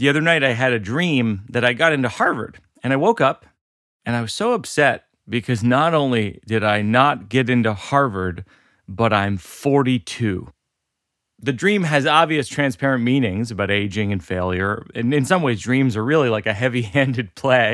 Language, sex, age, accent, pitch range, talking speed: English, male, 30-49, American, 115-165 Hz, 185 wpm